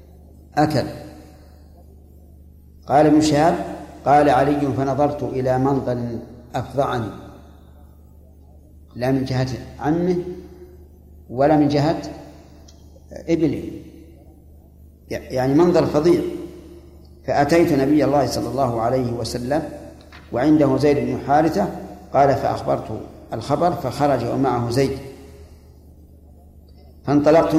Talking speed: 80 wpm